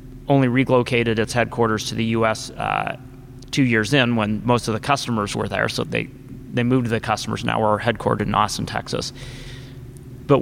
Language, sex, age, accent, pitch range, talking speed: English, male, 30-49, American, 115-130 Hz, 190 wpm